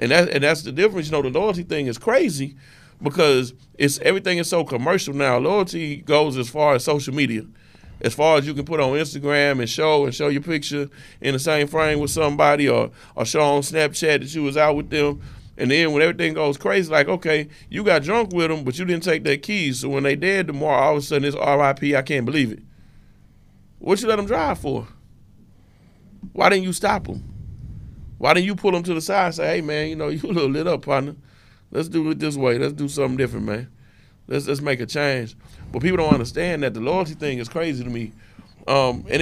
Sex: male